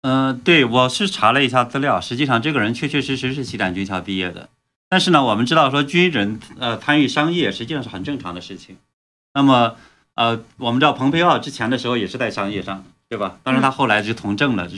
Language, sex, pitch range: Chinese, male, 100-145 Hz